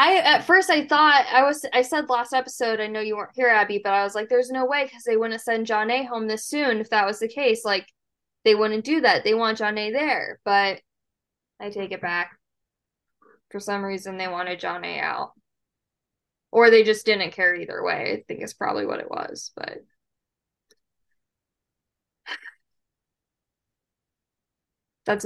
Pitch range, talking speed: 210-250 Hz, 185 wpm